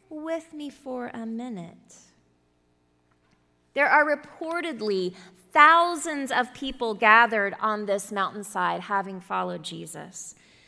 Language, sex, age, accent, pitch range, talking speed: English, female, 30-49, American, 190-310 Hz, 100 wpm